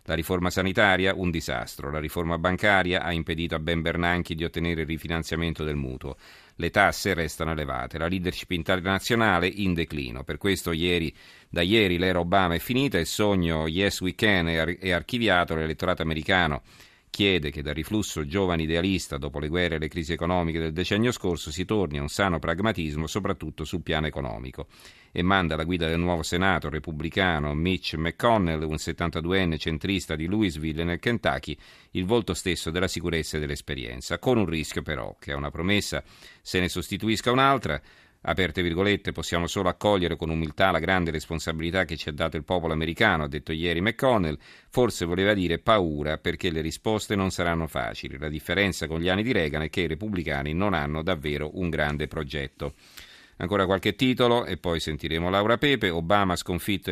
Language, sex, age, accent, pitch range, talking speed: Italian, male, 40-59, native, 80-95 Hz, 175 wpm